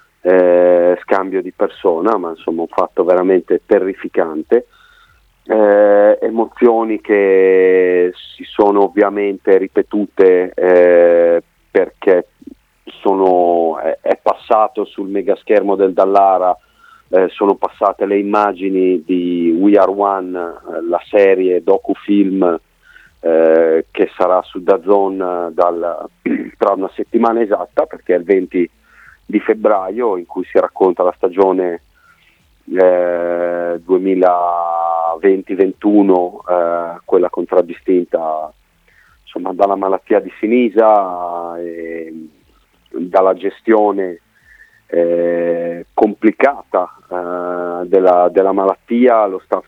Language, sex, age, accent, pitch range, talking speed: Italian, male, 40-59, native, 85-100 Hz, 95 wpm